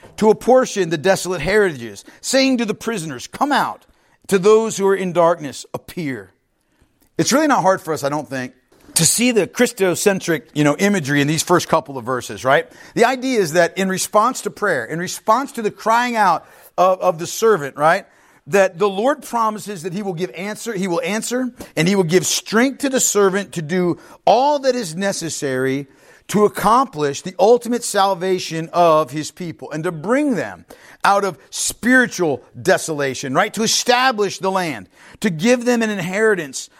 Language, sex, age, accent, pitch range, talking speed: English, male, 50-69, American, 160-220 Hz, 185 wpm